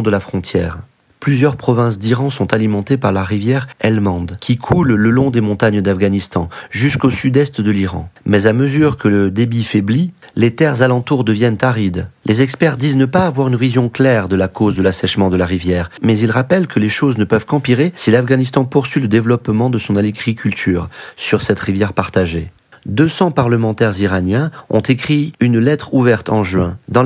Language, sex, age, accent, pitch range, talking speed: French, male, 30-49, French, 105-135 Hz, 185 wpm